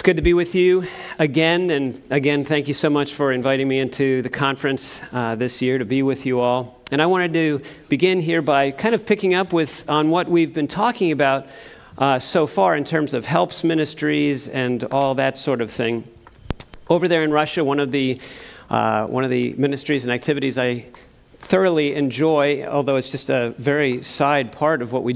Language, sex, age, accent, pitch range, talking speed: English, male, 40-59, American, 125-150 Hz, 205 wpm